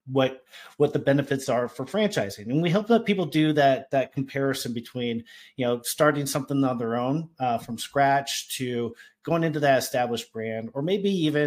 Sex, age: male, 30-49